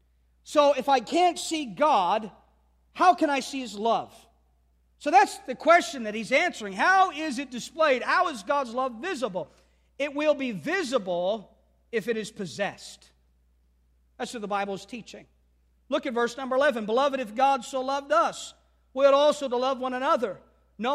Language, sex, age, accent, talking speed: English, male, 40-59, American, 175 wpm